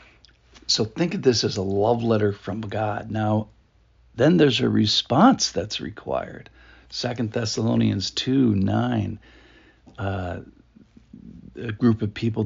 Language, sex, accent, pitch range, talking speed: English, male, American, 95-115 Hz, 125 wpm